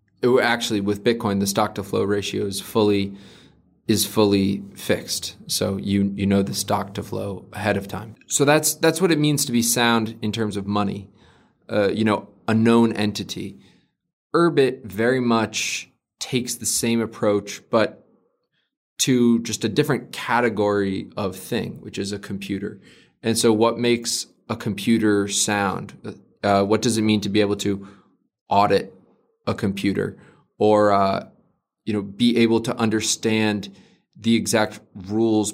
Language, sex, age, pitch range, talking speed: English, male, 20-39, 100-115 Hz, 155 wpm